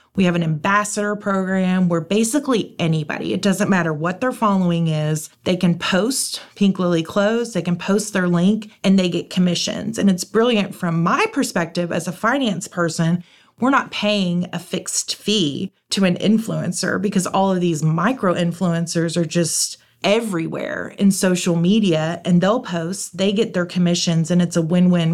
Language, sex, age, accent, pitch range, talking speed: English, female, 30-49, American, 175-205 Hz, 170 wpm